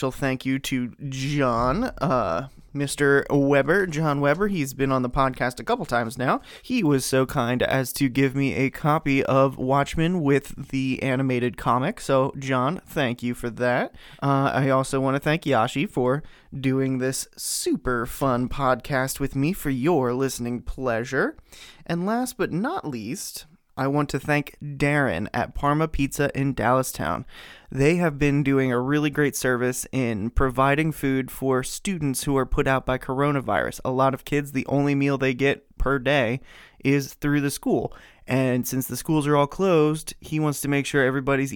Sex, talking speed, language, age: male, 175 wpm, English, 20-39